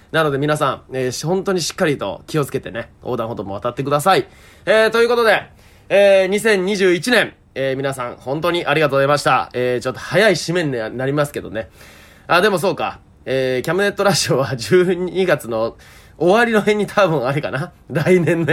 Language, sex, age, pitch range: Japanese, male, 20-39, 135-195 Hz